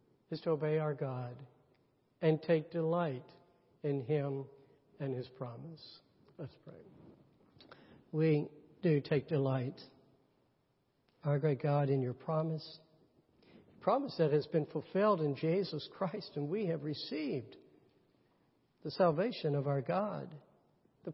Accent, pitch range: American, 140-175 Hz